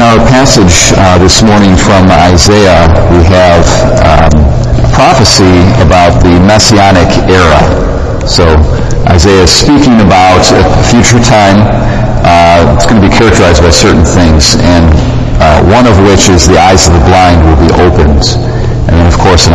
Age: 50-69